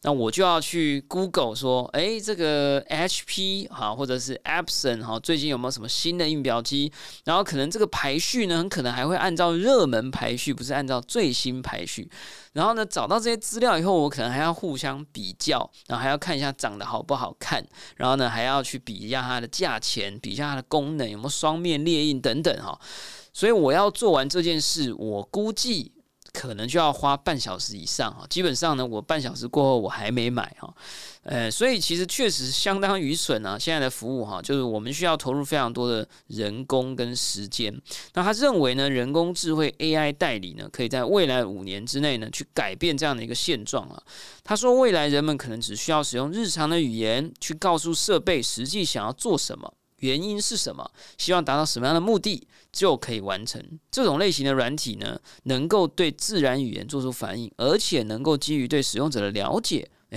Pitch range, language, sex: 125-170 Hz, Chinese, male